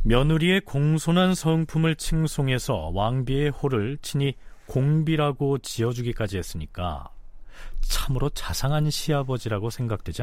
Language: Korean